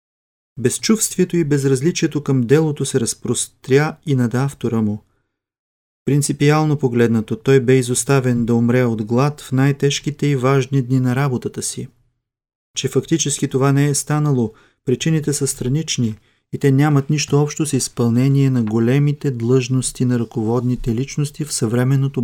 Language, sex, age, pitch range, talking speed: Bulgarian, male, 30-49, 120-145 Hz, 140 wpm